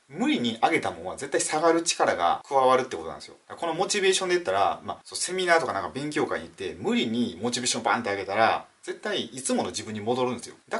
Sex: male